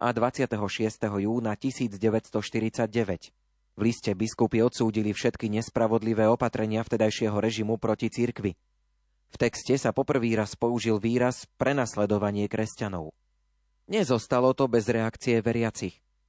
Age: 30-49